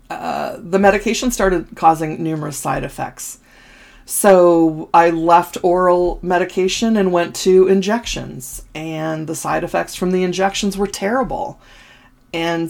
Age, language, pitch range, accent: 40-59, English, 160-200 Hz, American